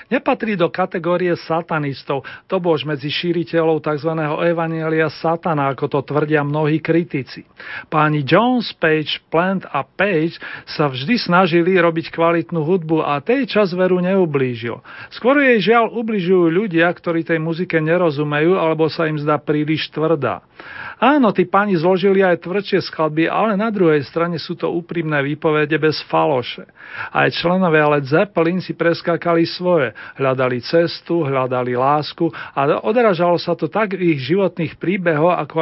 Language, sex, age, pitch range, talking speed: Slovak, male, 40-59, 150-180 Hz, 145 wpm